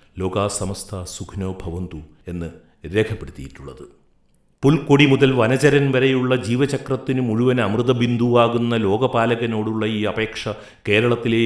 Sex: male